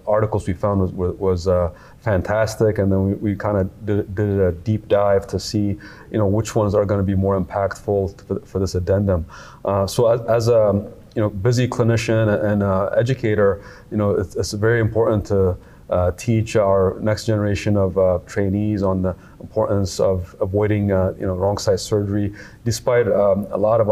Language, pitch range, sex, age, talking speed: English, 95-110 Hz, male, 30-49, 190 wpm